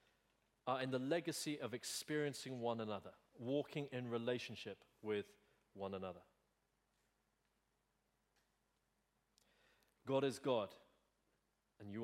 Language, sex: English, male